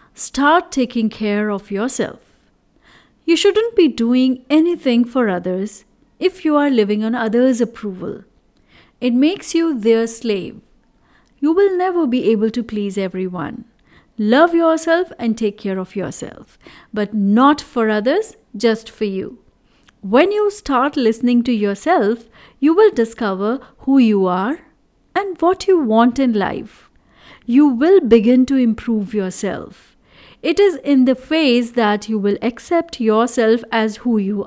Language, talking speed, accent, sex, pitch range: English, 145 wpm, Indian, female, 215-295 Hz